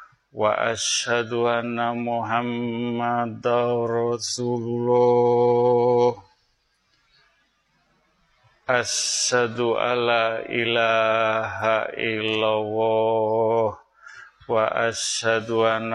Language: Indonesian